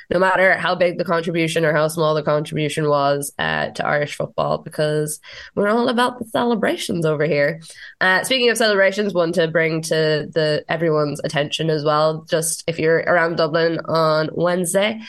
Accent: Irish